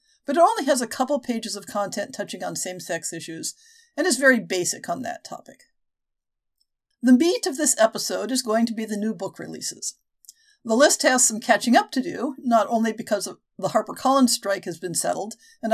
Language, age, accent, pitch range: English, 50-69, American, 215-300 Hz